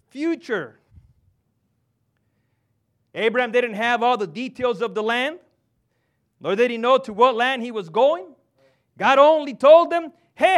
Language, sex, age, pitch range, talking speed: English, male, 40-59, 190-310 Hz, 140 wpm